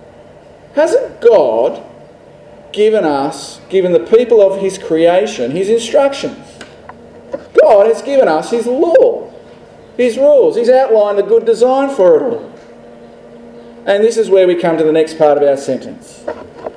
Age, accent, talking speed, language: 40-59, Australian, 145 wpm, English